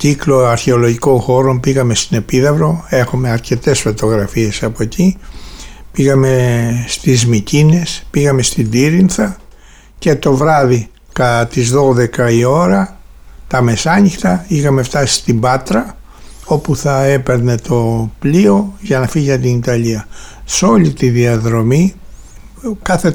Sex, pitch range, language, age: male, 120-160 Hz, Greek, 60-79